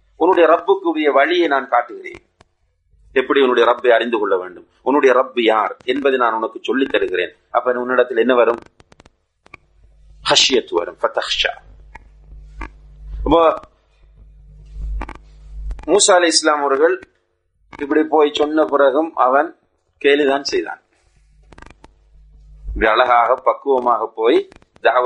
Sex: male